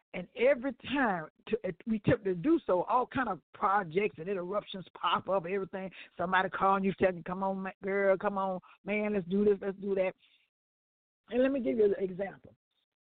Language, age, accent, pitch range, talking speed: English, 50-69, American, 175-225 Hz, 195 wpm